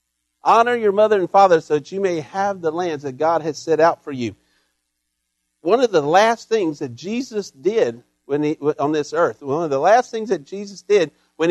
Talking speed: 215 wpm